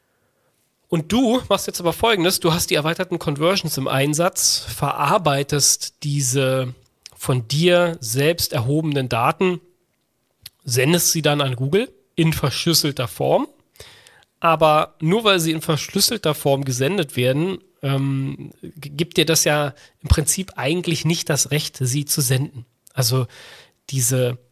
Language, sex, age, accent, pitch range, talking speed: German, male, 40-59, German, 130-165 Hz, 130 wpm